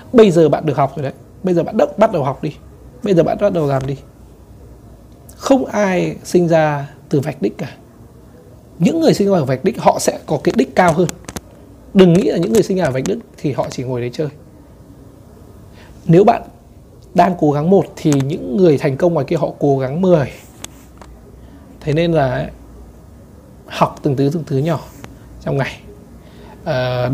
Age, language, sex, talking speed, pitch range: 20-39, Vietnamese, male, 200 wpm, 135-170 Hz